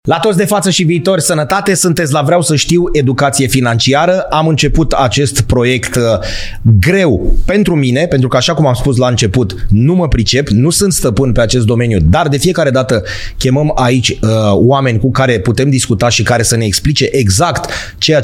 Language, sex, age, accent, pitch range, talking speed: Romanian, male, 30-49, native, 115-150 Hz, 190 wpm